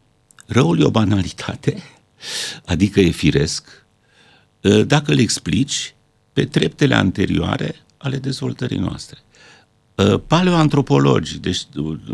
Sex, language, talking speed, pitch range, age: male, Romanian, 90 wpm, 85-140 Hz, 60-79